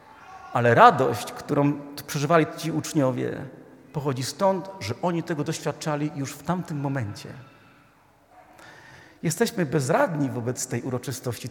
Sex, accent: male, native